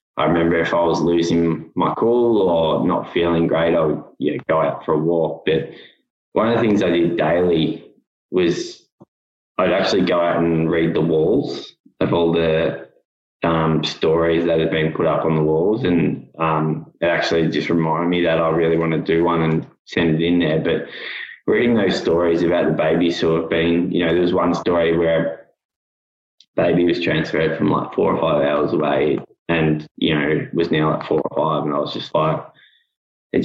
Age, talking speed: 10-29, 205 wpm